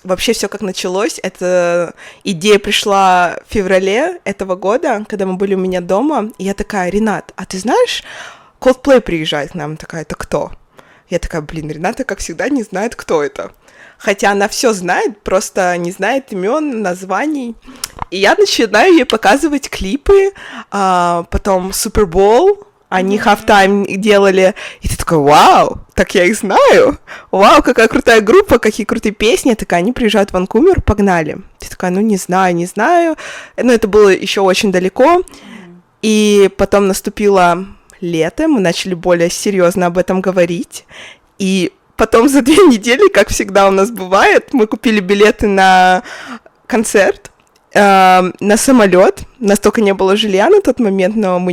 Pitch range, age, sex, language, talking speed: 185-235 Hz, 20-39, female, Russian, 160 wpm